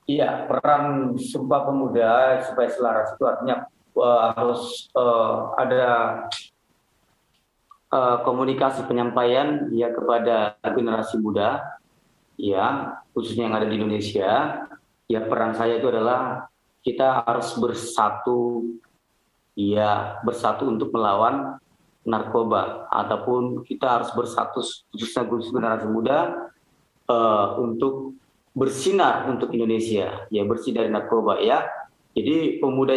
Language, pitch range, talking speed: Indonesian, 115-140 Hz, 105 wpm